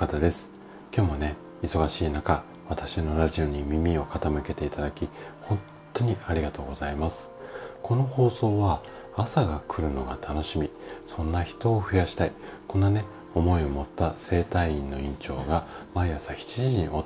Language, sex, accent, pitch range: Japanese, male, native, 75-95 Hz